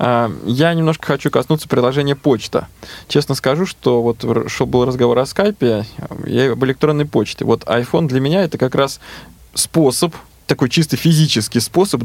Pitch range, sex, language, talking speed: 125-155 Hz, male, Russian, 155 wpm